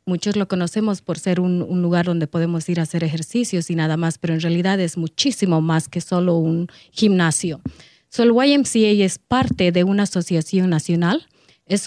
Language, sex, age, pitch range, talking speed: English, female, 30-49, 175-220 Hz, 185 wpm